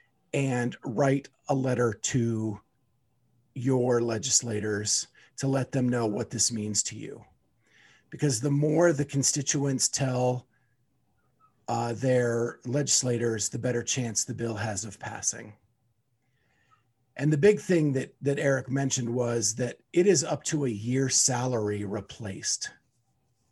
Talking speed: 130 wpm